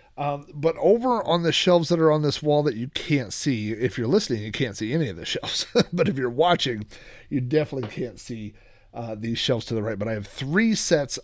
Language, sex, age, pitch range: English, male, 40-59, 115-160 Hz